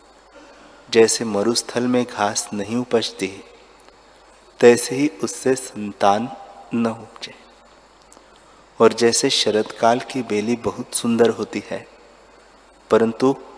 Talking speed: 100 wpm